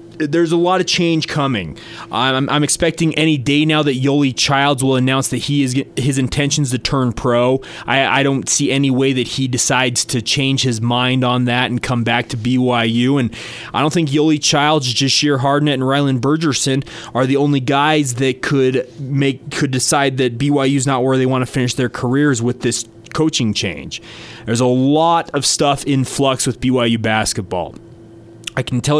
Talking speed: 190 wpm